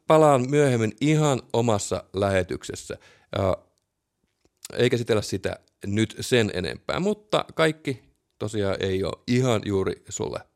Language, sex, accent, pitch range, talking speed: Finnish, male, native, 100-130 Hz, 115 wpm